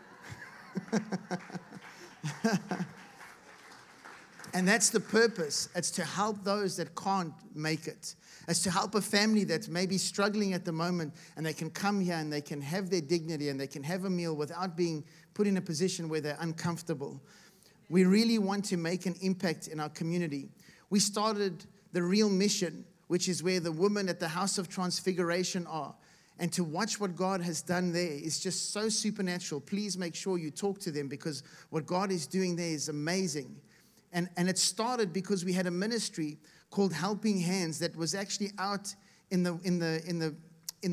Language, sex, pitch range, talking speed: English, male, 170-200 Hz, 185 wpm